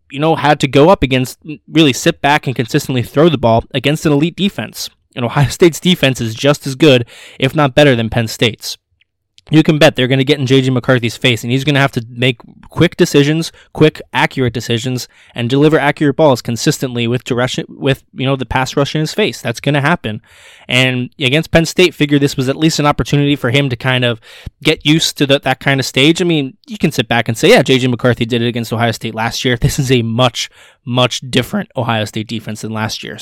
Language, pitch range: English, 115-150 Hz